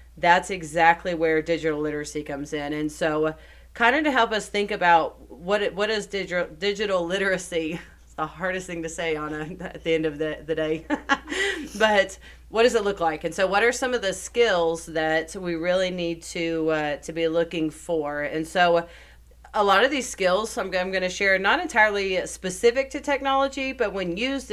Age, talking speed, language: 30-49, 195 wpm, English